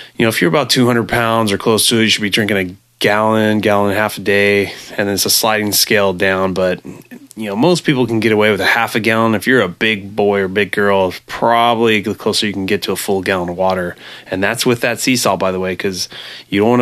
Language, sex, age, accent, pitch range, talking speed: English, male, 20-39, American, 100-120 Hz, 270 wpm